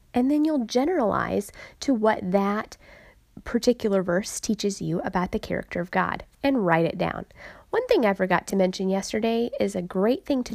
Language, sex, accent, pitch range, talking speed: English, female, American, 180-235 Hz, 180 wpm